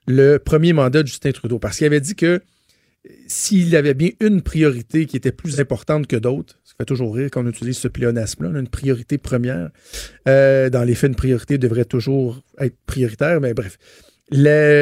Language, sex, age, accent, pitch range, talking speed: French, male, 50-69, Canadian, 125-165 Hz, 185 wpm